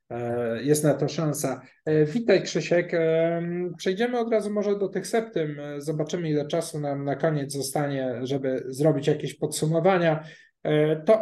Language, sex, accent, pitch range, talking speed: Polish, male, native, 145-170 Hz, 135 wpm